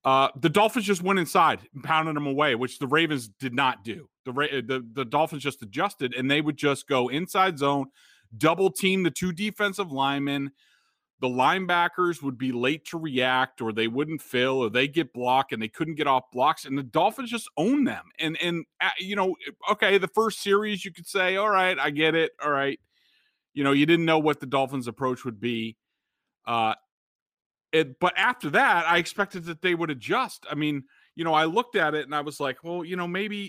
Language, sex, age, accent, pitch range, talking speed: English, male, 30-49, American, 130-170 Hz, 210 wpm